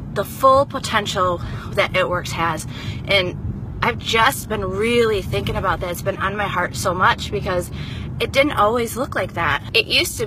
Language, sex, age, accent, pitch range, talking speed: English, female, 20-39, American, 190-235 Hz, 185 wpm